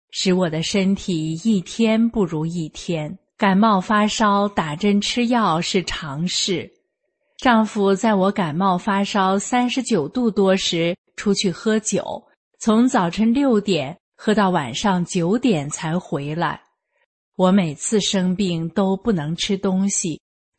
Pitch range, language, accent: 175-220 Hz, Chinese, native